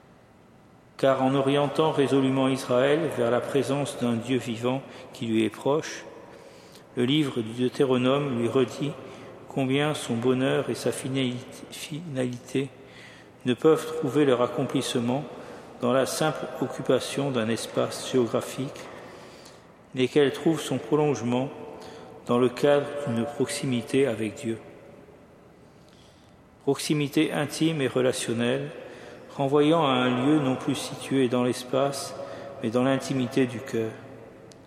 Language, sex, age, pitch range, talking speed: French, male, 50-69, 125-145 Hz, 120 wpm